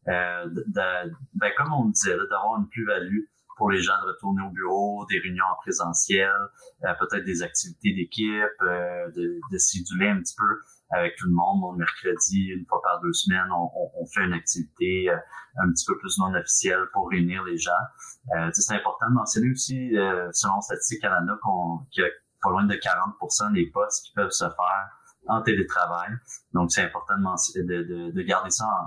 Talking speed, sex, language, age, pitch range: 205 wpm, male, French, 30-49, 85-115 Hz